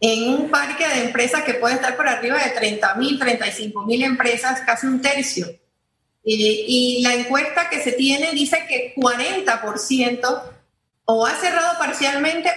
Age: 40-59